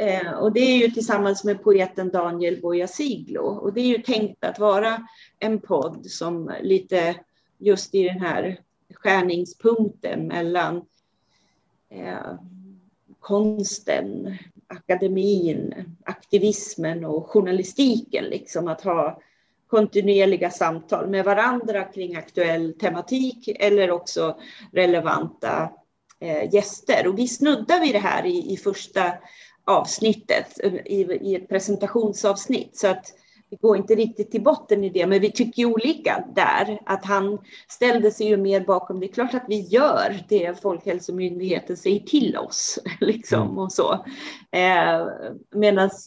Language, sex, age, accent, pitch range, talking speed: Swedish, female, 40-59, native, 185-220 Hz, 125 wpm